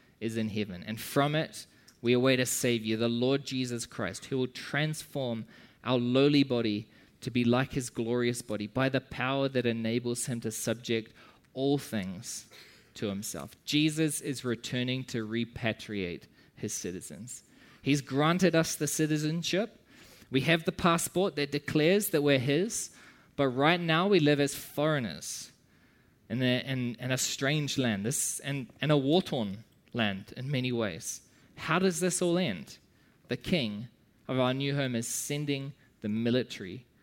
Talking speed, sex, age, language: 155 wpm, male, 20-39, English